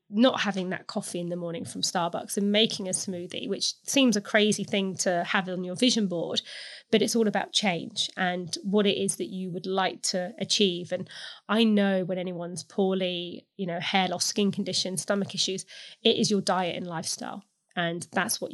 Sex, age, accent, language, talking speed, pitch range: female, 20-39, British, English, 200 wpm, 180-205 Hz